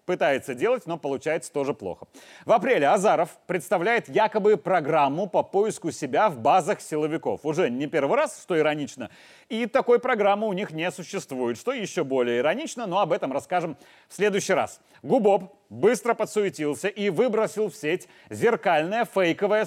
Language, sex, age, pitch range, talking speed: Russian, male, 30-49, 160-215 Hz, 155 wpm